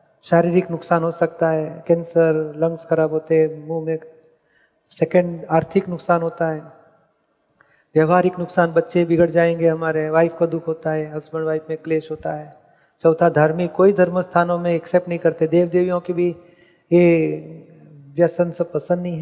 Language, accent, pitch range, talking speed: Gujarati, native, 165-185 Hz, 130 wpm